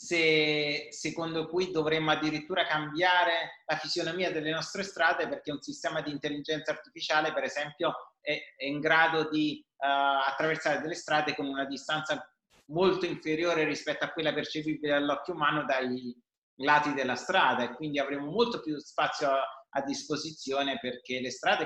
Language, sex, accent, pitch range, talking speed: Italian, male, native, 145-170 Hz, 150 wpm